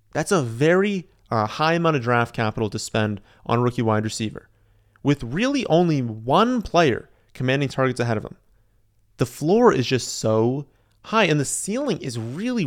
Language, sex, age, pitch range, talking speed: English, male, 30-49, 110-150 Hz, 175 wpm